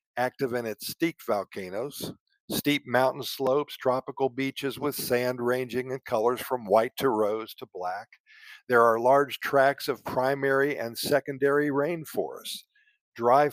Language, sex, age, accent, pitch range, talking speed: Italian, male, 50-69, American, 125-165 Hz, 140 wpm